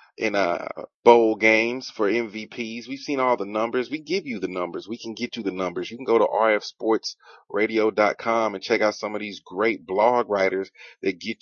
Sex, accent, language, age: male, American, English, 30-49